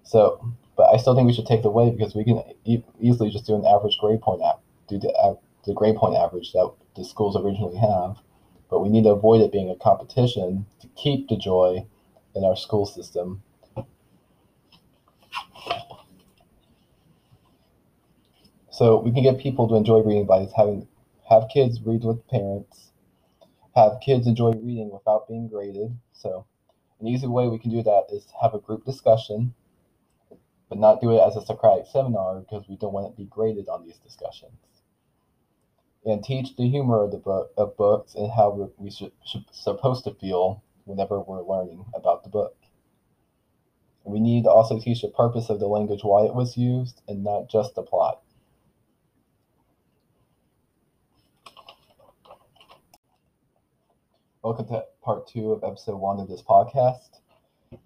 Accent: American